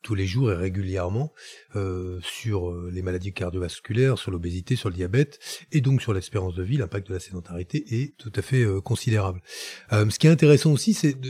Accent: French